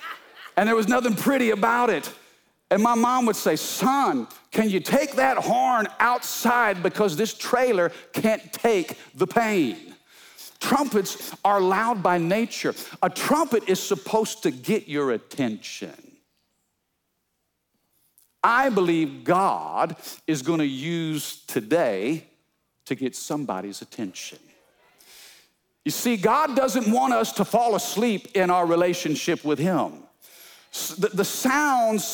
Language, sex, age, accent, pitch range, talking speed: English, male, 50-69, American, 180-235 Hz, 125 wpm